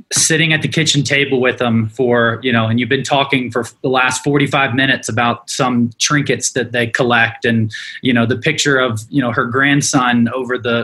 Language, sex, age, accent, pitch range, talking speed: English, male, 20-39, American, 115-140 Hz, 205 wpm